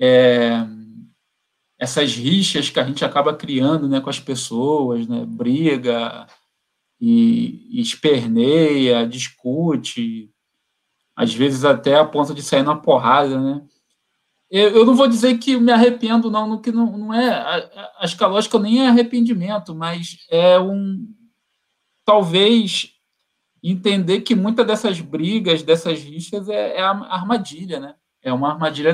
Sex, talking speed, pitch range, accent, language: male, 140 wpm, 145-210 Hz, Brazilian, Portuguese